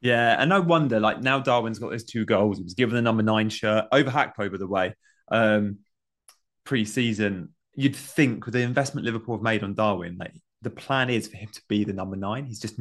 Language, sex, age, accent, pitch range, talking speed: English, male, 20-39, British, 105-125 Hz, 225 wpm